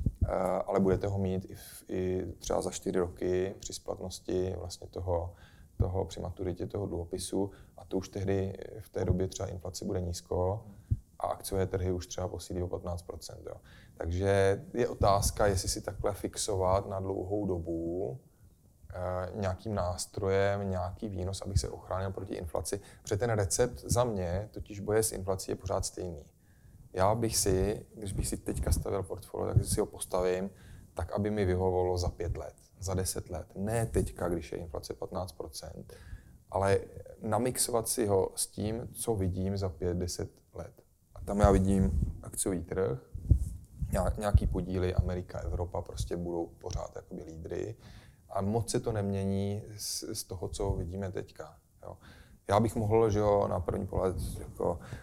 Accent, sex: native, male